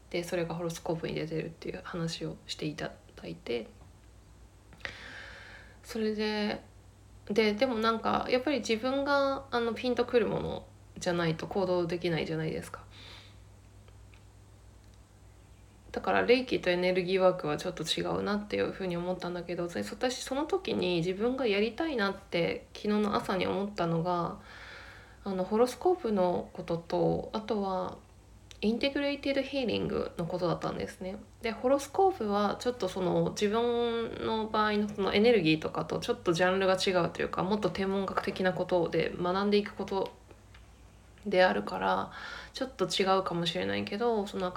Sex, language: female, Japanese